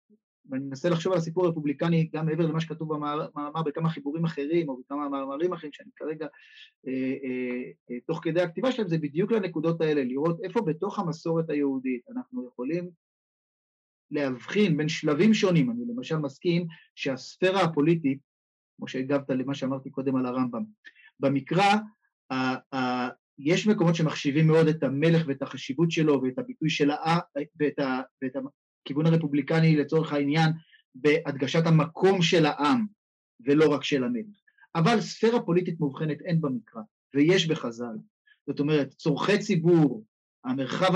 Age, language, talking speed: 30-49, Hebrew, 140 wpm